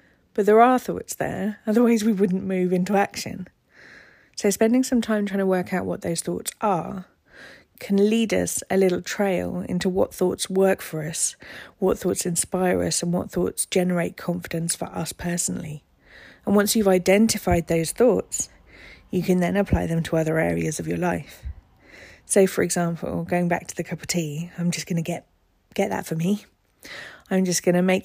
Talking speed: 190 wpm